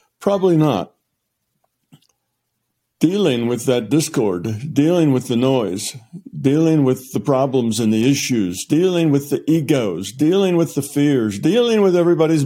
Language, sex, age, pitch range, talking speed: English, male, 60-79, 120-145 Hz, 135 wpm